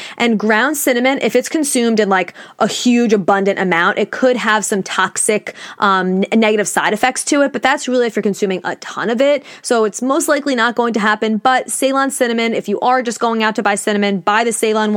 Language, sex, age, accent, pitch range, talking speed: English, female, 20-39, American, 205-255 Hz, 225 wpm